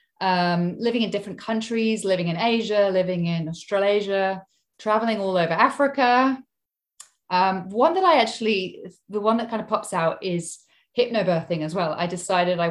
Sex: female